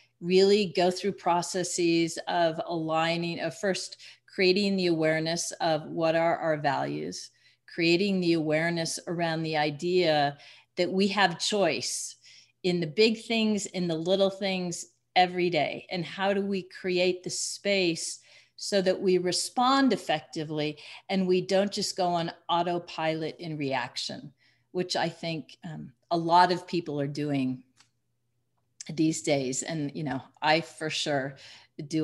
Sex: female